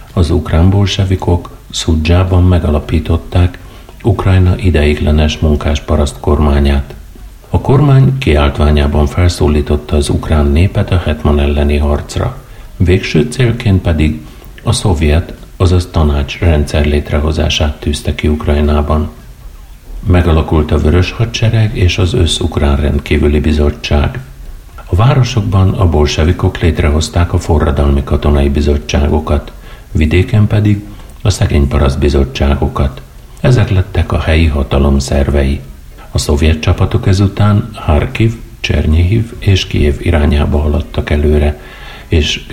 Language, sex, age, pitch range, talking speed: Hungarian, male, 60-79, 75-95 Hz, 105 wpm